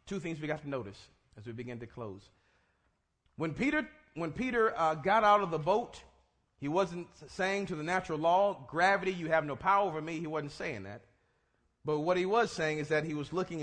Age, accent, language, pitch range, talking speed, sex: 40-59, American, English, 135-205 Hz, 215 wpm, male